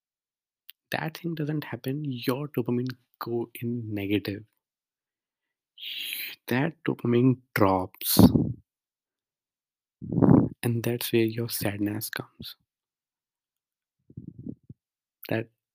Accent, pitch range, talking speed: native, 115-150 Hz, 70 wpm